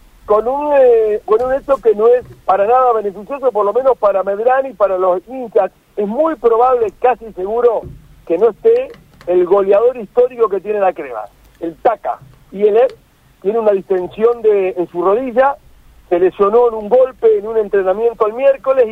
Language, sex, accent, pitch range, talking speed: Spanish, male, Argentinian, 195-255 Hz, 185 wpm